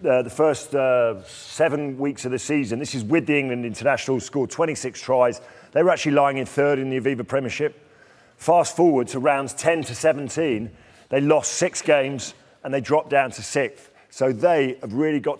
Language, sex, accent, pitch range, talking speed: English, male, British, 125-150 Hz, 195 wpm